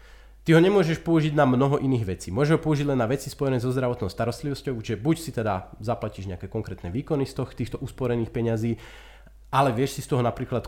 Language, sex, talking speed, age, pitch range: Slovak, male, 210 wpm, 30-49, 115-150 Hz